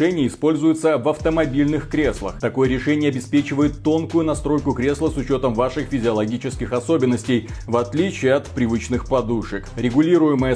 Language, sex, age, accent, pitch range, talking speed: Russian, male, 30-49, native, 120-150 Hz, 120 wpm